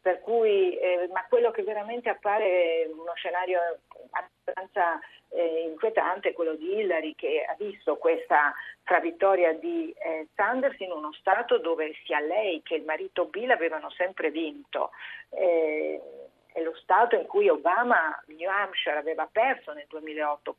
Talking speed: 150 wpm